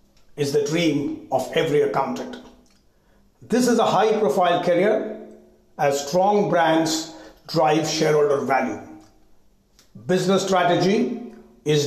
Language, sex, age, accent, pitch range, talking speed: English, male, 60-79, Indian, 155-200 Hz, 105 wpm